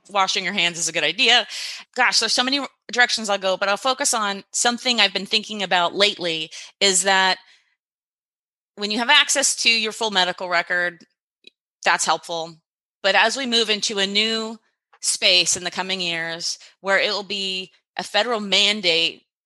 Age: 30-49